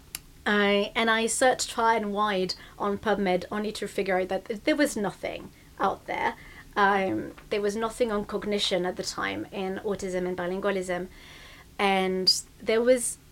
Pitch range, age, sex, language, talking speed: 195-225 Hz, 30-49, female, English, 160 wpm